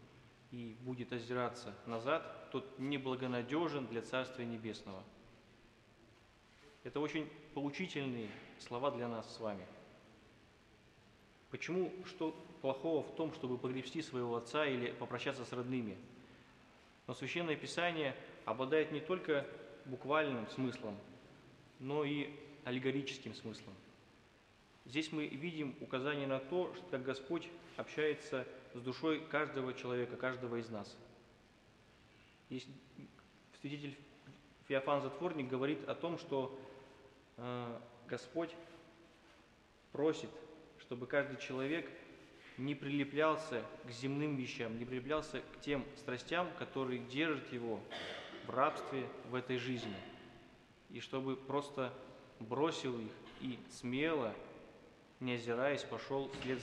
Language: Russian